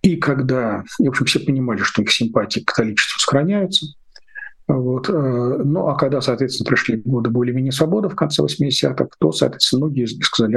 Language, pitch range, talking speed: Russian, 115-150 Hz, 160 wpm